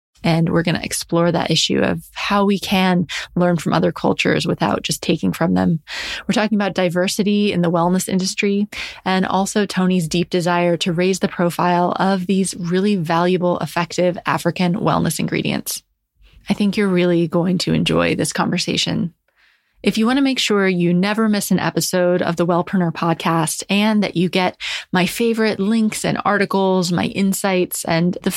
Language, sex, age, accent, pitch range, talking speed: English, female, 20-39, American, 175-200 Hz, 175 wpm